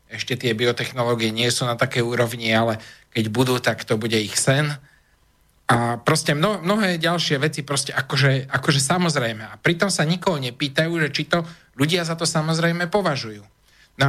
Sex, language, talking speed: male, Slovak, 165 wpm